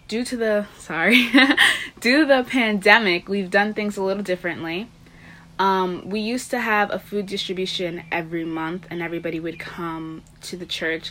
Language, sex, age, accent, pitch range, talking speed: English, female, 20-39, American, 170-205 Hz, 165 wpm